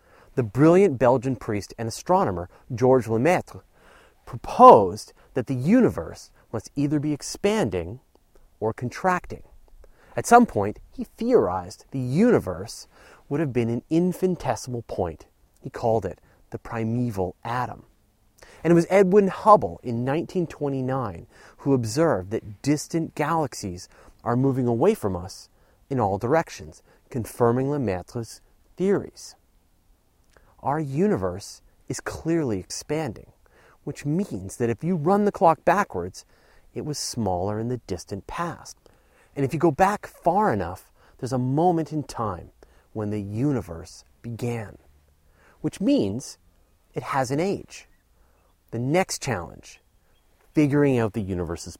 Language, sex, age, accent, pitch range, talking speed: English, male, 30-49, American, 105-165 Hz, 125 wpm